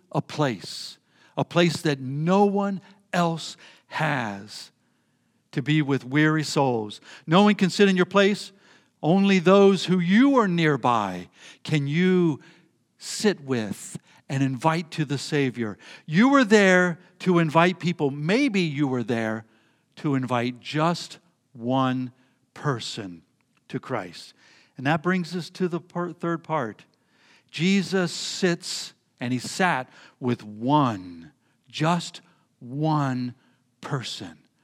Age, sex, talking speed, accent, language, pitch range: 60-79, male, 125 wpm, American, English, 135-180 Hz